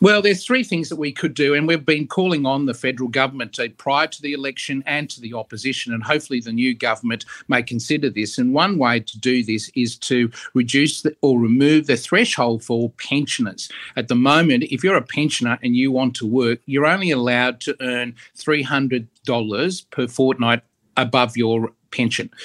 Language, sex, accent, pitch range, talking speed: English, male, Australian, 125-150 Hz, 185 wpm